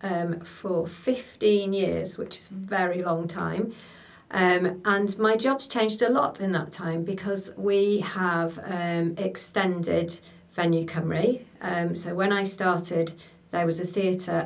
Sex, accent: female, British